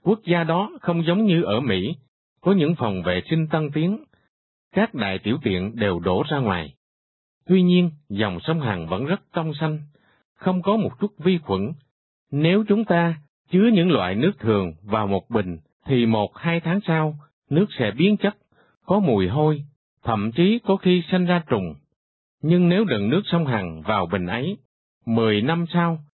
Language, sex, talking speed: Vietnamese, male, 185 wpm